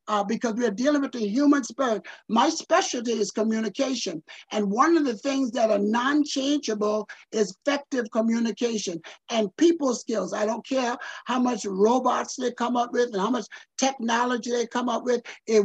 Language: English